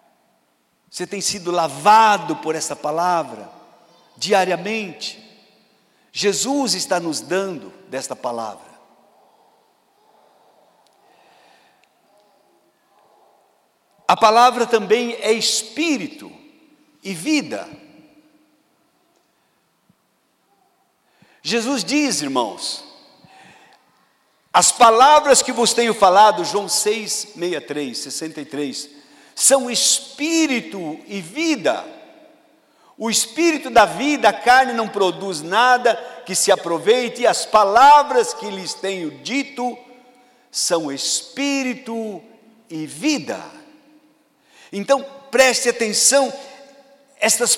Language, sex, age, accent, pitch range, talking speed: Portuguese, male, 60-79, Brazilian, 195-285 Hz, 80 wpm